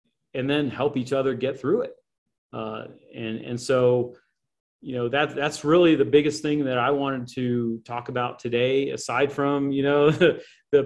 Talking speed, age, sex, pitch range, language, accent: 175 wpm, 40-59, male, 120-145 Hz, English, American